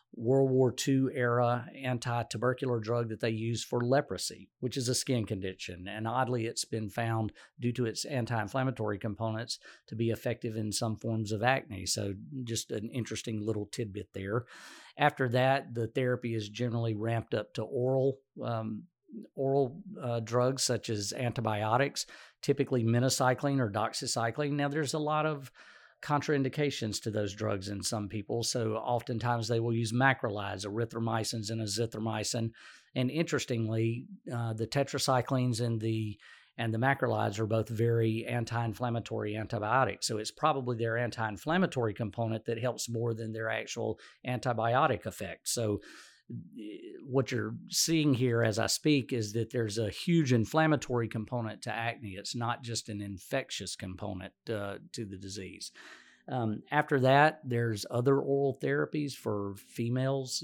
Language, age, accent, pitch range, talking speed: English, 50-69, American, 110-130 Hz, 145 wpm